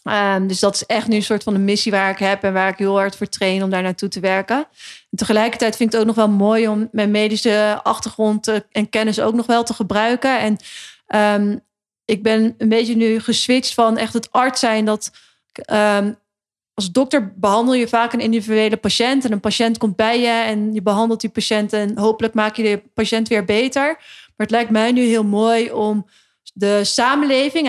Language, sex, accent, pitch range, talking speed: Dutch, female, Dutch, 210-230 Hz, 215 wpm